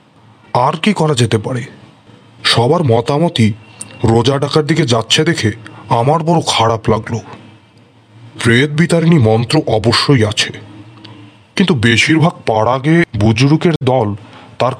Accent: native